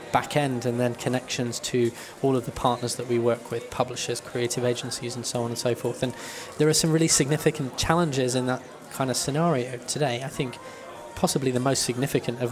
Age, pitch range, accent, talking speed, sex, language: 20-39, 125-145 Hz, British, 205 wpm, male, Swedish